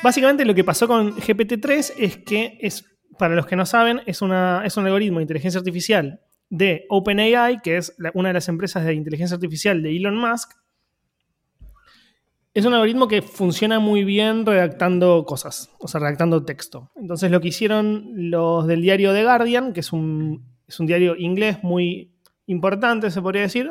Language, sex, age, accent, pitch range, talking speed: Spanish, male, 20-39, Argentinian, 170-220 Hz, 170 wpm